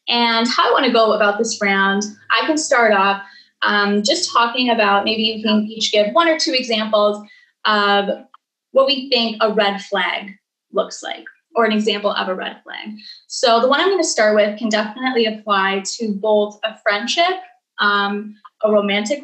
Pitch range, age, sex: 210-260 Hz, 10-29, female